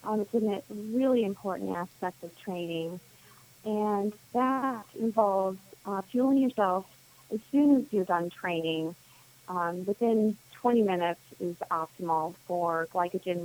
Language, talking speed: English, 130 wpm